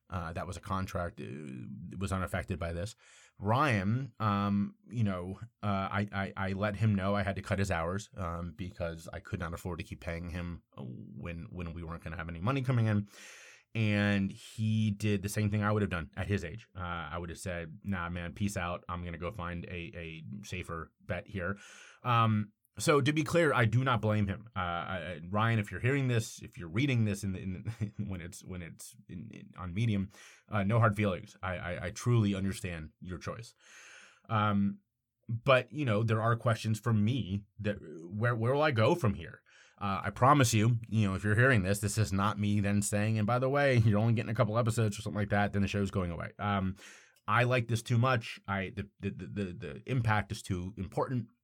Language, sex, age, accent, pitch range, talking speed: English, male, 30-49, American, 95-110 Hz, 225 wpm